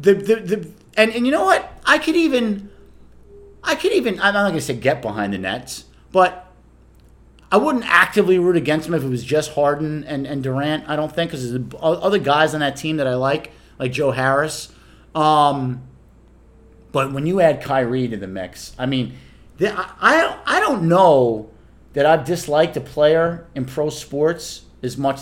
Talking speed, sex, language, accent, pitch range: 195 wpm, male, English, American, 120-185 Hz